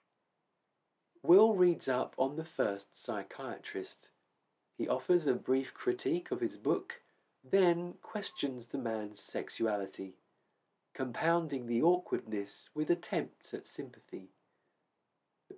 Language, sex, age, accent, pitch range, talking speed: English, male, 50-69, British, 120-180 Hz, 110 wpm